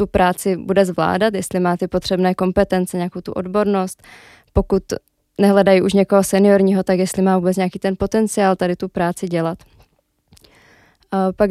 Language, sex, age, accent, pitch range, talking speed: Czech, female, 20-39, native, 185-200 Hz, 150 wpm